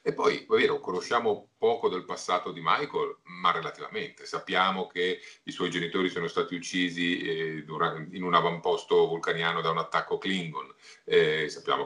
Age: 40-59